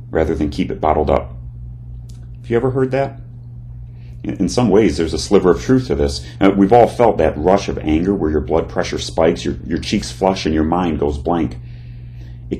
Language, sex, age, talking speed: English, male, 40-59, 205 wpm